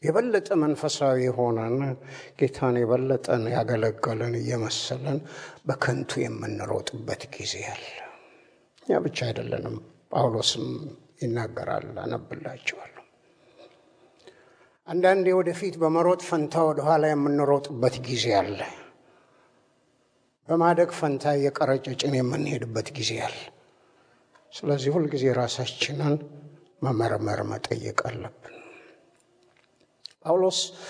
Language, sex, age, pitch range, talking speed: Amharic, male, 60-79, 125-175 Hz, 75 wpm